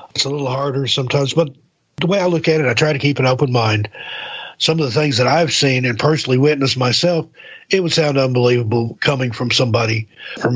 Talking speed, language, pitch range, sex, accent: 215 wpm, English, 120-145 Hz, male, American